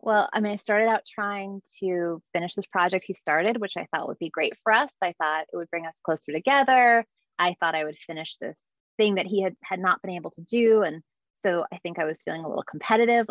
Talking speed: 250 wpm